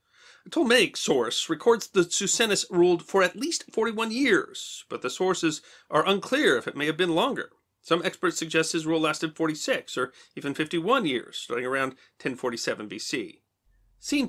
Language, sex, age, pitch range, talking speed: English, male, 40-59, 160-215 Hz, 160 wpm